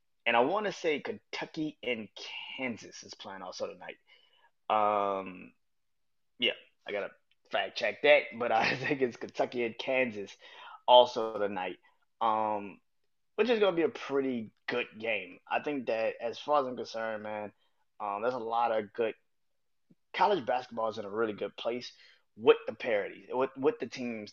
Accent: American